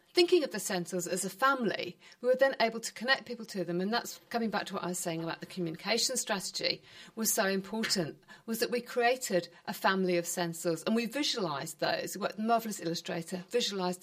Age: 50-69